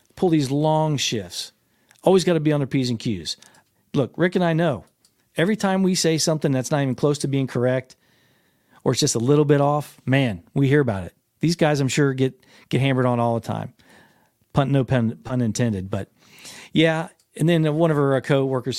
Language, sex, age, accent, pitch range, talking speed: English, male, 40-59, American, 120-150 Hz, 215 wpm